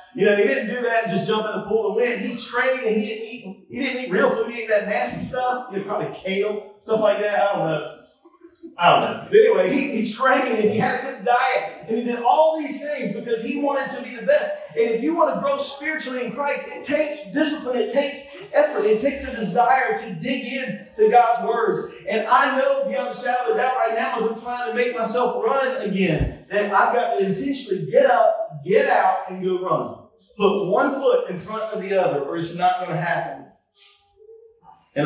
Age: 40-59